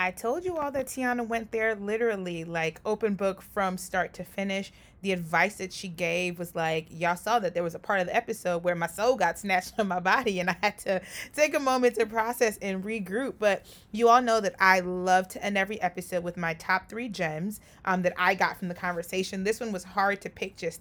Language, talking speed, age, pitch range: English, 235 wpm, 30-49, 175-215 Hz